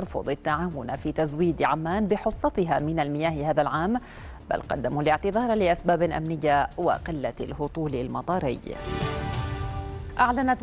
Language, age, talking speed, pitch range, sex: Arabic, 40-59, 105 wpm, 155-190 Hz, female